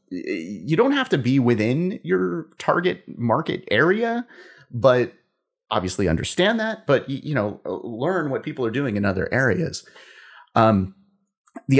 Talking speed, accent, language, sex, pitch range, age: 135 wpm, American, English, male, 100-145 Hz, 30-49